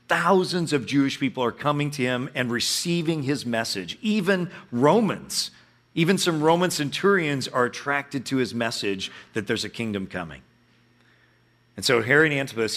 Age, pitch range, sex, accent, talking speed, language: 40-59, 115-150 Hz, male, American, 150 wpm, English